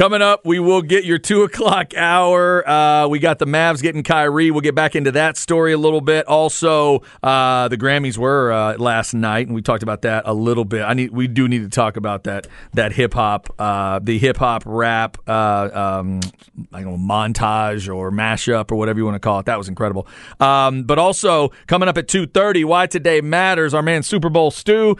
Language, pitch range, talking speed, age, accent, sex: English, 135-180 Hz, 215 wpm, 40-59, American, male